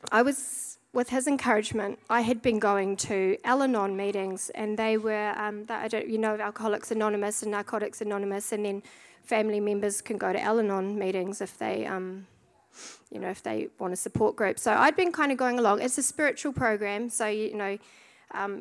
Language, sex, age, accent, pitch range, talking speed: English, female, 30-49, Australian, 195-235 Hz, 205 wpm